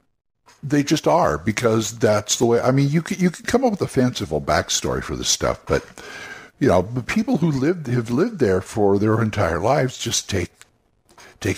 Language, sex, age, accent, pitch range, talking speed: English, male, 60-79, American, 100-125 Hz, 200 wpm